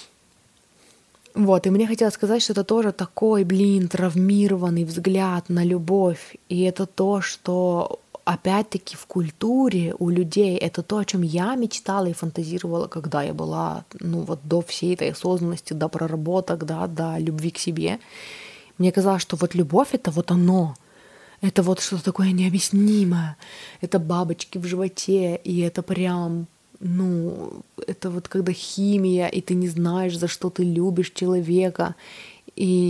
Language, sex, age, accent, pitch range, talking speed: Russian, female, 20-39, native, 170-190 Hz, 150 wpm